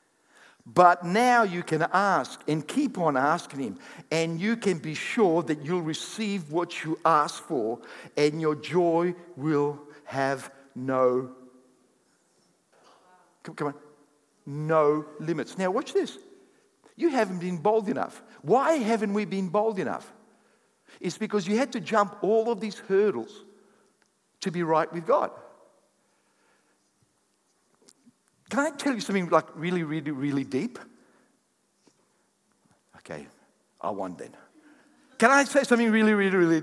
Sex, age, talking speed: male, 50-69, 135 wpm